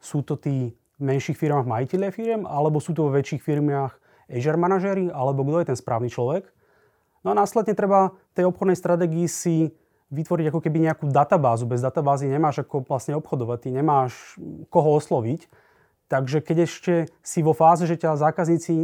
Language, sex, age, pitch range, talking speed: Slovak, male, 30-49, 135-170 Hz, 170 wpm